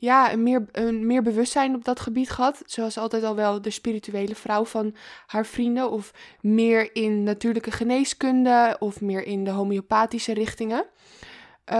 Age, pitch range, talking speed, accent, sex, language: 20-39, 215-250 Hz, 155 wpm, Dutch, female, Dutch